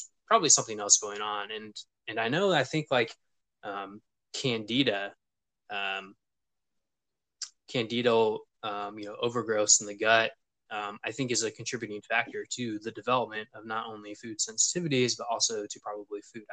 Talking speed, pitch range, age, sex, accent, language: 155 wpm, 105-130 Hz, 20-39, male, American, English